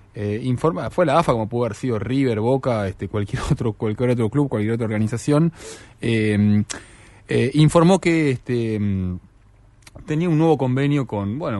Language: Spanish